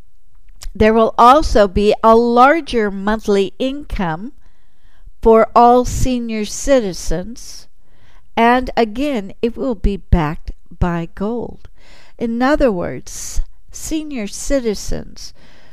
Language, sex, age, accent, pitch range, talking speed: English, female, 60-79, American, 170-230 Hz, 95 wpm